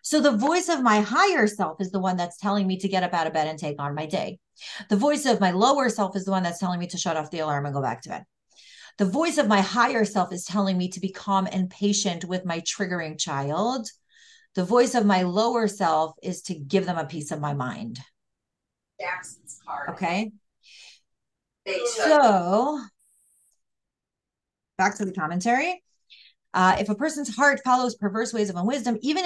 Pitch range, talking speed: 180-245 Hz, 195 wpm